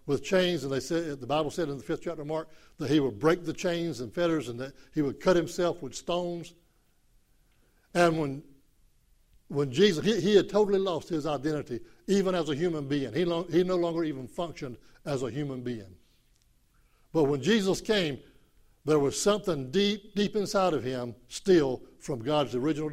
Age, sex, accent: 60-79, male, American